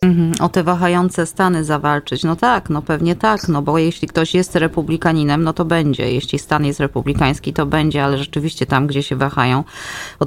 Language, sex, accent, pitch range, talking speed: Polish, female, native, 140-180 Hz, 185 wpm